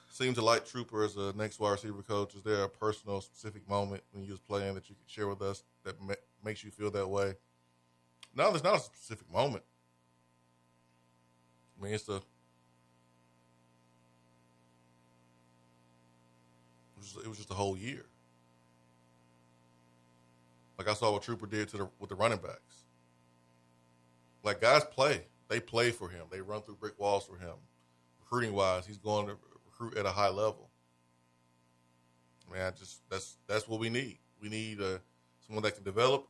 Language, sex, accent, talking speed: English, male, American, 170 wpm